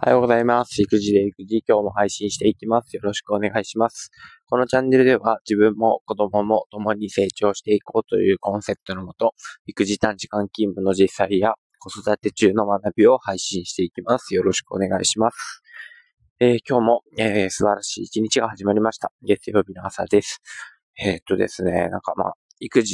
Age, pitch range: 20-39, 100-115 Hz